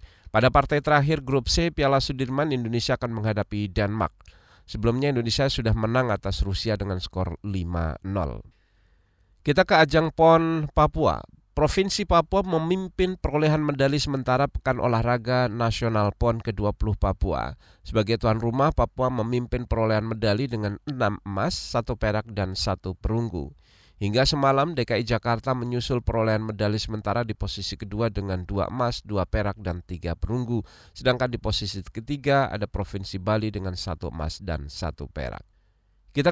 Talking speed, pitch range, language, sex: 140 wpm, 100-130 Hz, Indonesian, male